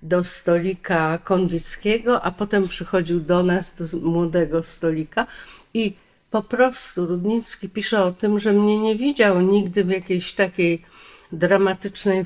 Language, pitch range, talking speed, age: Polish, 175-225 Hz, 130 wpm, 50-69